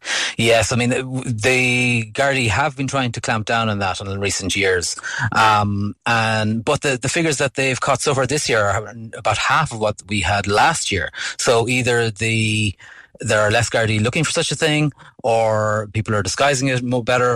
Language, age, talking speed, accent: English, 30-49, 195 wpm, Irish